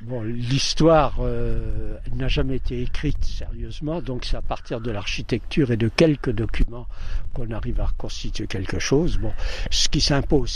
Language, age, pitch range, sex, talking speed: French, 60-79, 110-145 Hz, male, 160 wpm